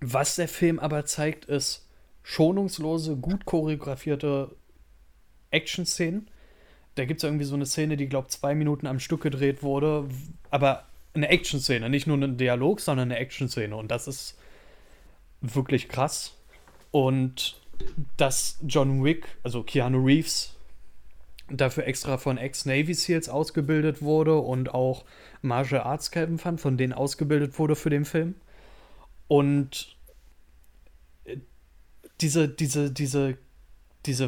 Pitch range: 125-150 Hz